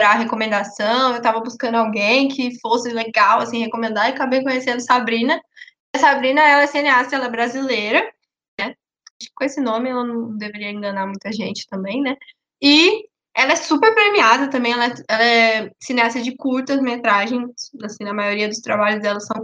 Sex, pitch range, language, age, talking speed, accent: female, 225-280 Hz, Portuguese, 10-29, 180 wpm, Brazilian